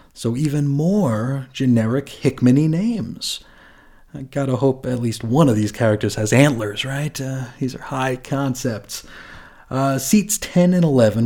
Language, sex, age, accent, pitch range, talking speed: English, male, 30-49, American, 110-145 Hz, 150 wpm